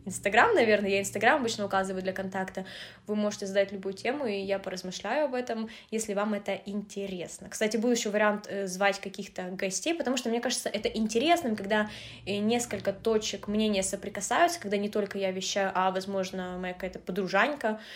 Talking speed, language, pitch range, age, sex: 165 wpm, Russian, 195-245 Hz, 20-39, female